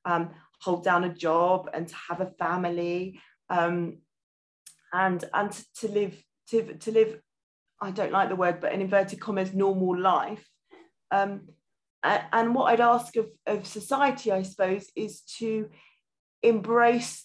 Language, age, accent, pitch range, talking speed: English, 30-49, British, 185-215 Hz, 150 wpm